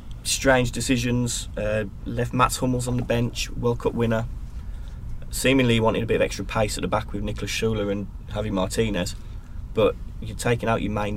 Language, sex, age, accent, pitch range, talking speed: English, male, 20-39, British, 100-115 Hz, 190 wpm